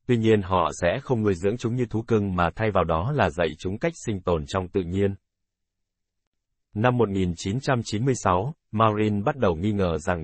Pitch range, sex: 90-120 Hz, male